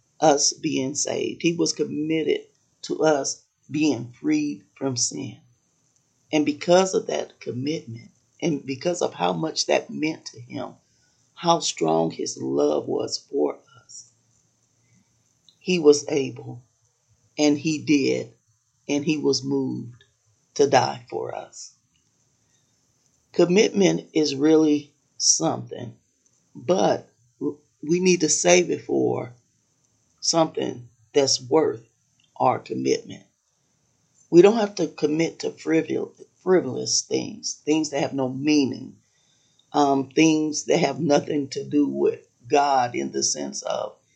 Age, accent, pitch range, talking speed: 40-59, American, 120-155 Hz, 120 wpm